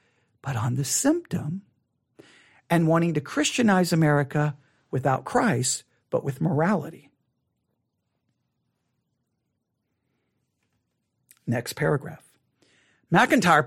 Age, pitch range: 50-69, 180-225 Hz